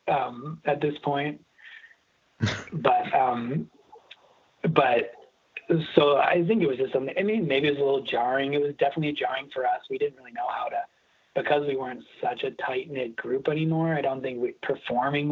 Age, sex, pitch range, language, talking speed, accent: 30-49, male, 125-175 Hz, English, 180 wpm, American